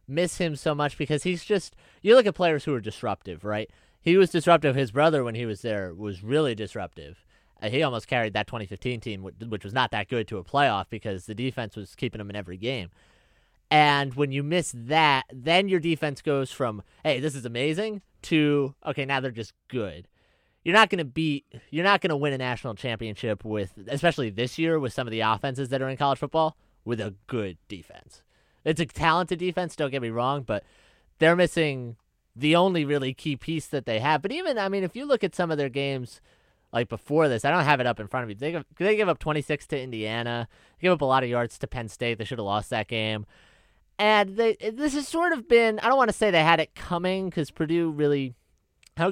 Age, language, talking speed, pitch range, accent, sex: 30-49, English, 230 wpm, 115-170 Hz, American, male